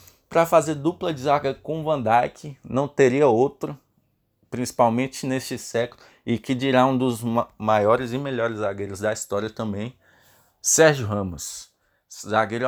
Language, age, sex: Portuguese, 20-39, male